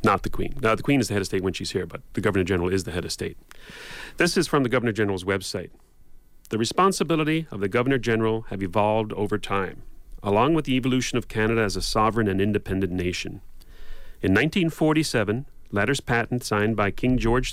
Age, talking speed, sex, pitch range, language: 40-59, 195 wpm, male, 100-125 Hz, English